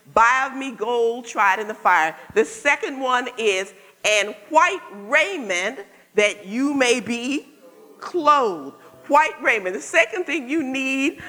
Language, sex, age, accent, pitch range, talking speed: English, female, 50-69, American, 190-280 Hz, 145 wpm